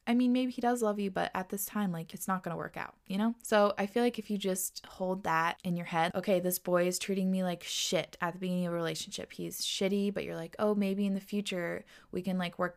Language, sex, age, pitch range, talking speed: English, female, 20-39, 180-220 Hz, 280 wpm